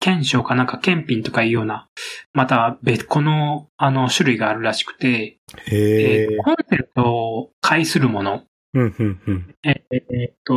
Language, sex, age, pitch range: Japanese, male, 20-39, 115-155 Hz